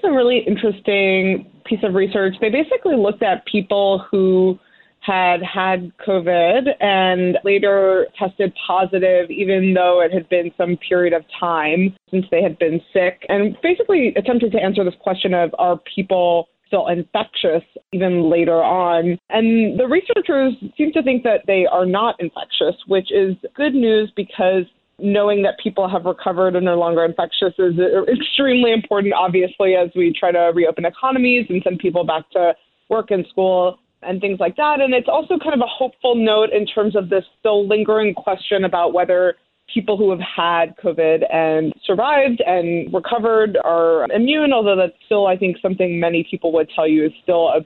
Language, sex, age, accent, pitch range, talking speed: English, female, 20-39, American, 180-220 Hz, 170 wpm